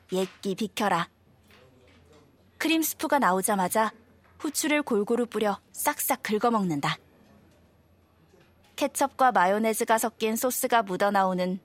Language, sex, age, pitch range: Korean, female, 20-39, 165-245 Hz